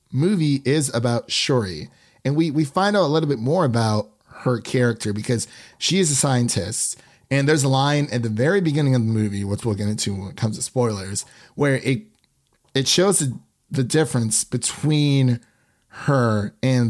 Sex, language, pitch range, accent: male, English, 110-130 Hz, American